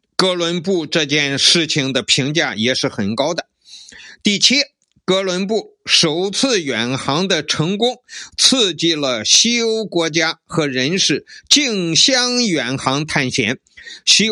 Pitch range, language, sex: 150-225 Hz, Chinese, male